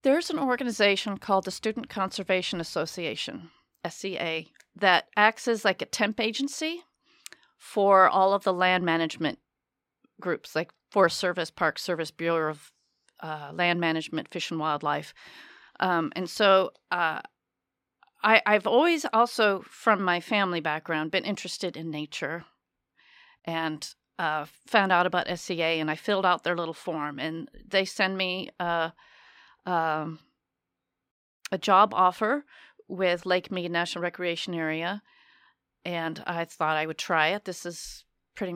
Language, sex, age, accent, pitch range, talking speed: English, female, 40-59, American, 170-225 Hz, 140 wpm